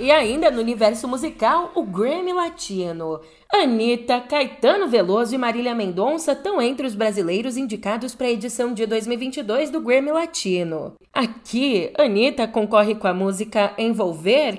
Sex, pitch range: female, 200-260 Hz